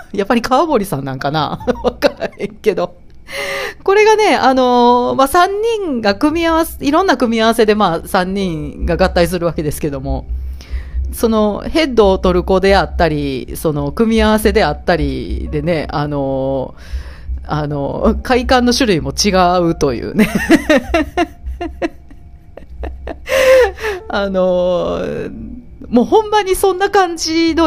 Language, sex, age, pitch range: Japanese, female, 40-59, 155-245 Hz